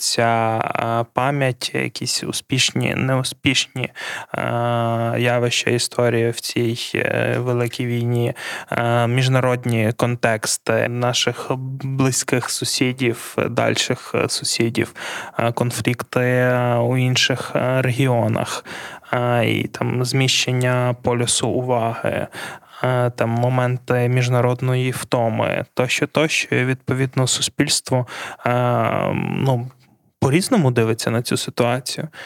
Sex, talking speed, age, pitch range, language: male, 80 wpm, 20-39, 120-130 Hz, Ukrainian